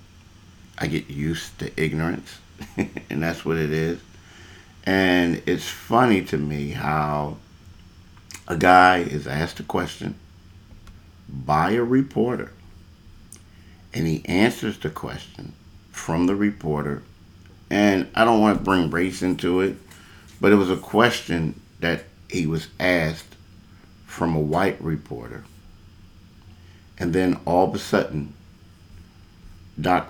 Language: English